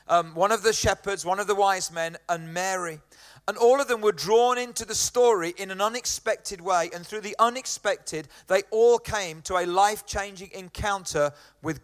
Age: 40-59